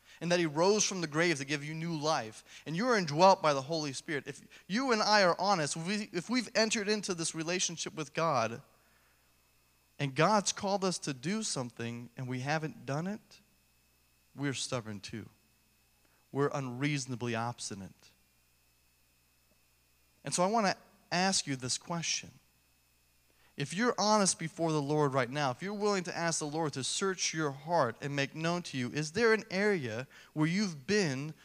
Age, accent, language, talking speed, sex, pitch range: 30-49, American, English, 175 wpm, male, 110-175 Hz